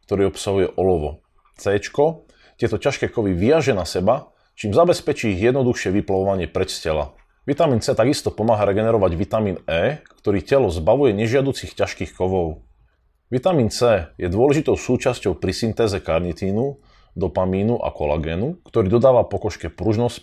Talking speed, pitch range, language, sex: 130 wpm, 90-115 Hz, Slovak, male